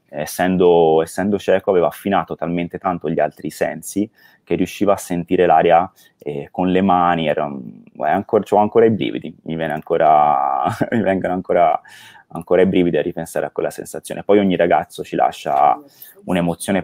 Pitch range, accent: 85-100 Hz, native